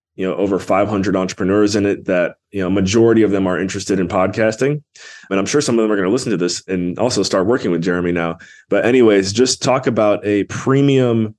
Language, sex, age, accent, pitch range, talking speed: English, male, 20-39, American, 95-115 Hz, 225 wpm